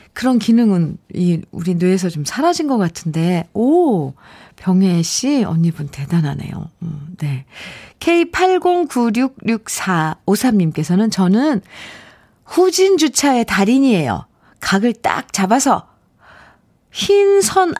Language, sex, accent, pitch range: Korean, female, native, 165-245 Hz